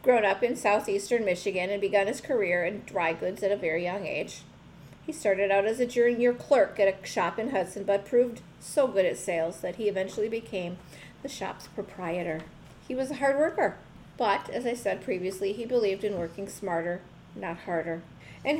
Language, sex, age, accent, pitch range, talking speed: English, female, 40-59, American, 180-235 Hz, 195 wpm